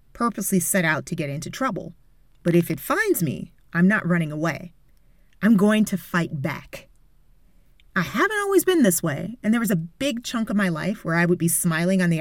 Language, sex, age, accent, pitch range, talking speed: English, female, 30-49, American, 170-220 Hz, 210 wpm